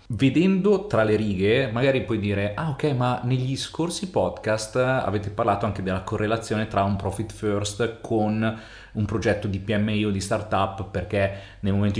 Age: 30-49